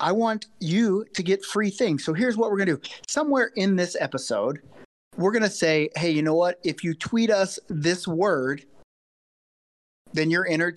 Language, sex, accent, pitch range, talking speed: English, male, American, 150-220 Hz, 195 wpm